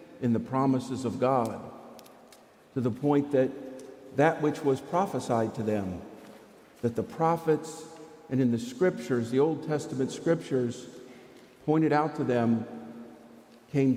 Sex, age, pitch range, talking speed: male, 50-69, 130-165 Hz, 135 wpm